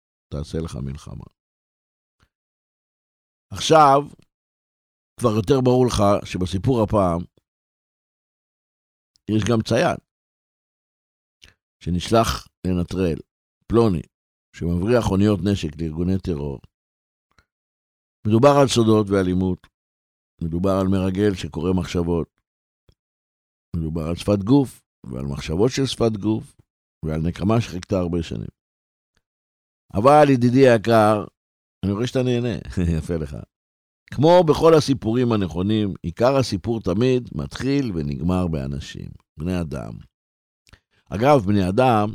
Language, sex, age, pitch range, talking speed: Hebrew, male, 60-79, 80-120 Hz, 95 wpm